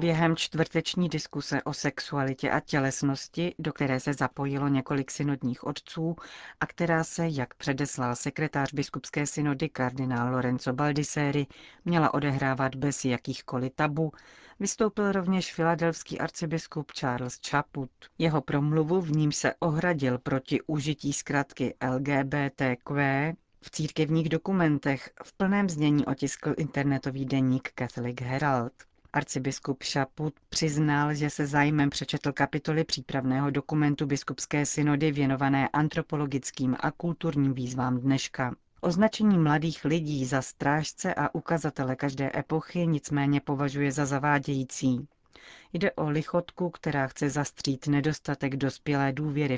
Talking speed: 115 wpm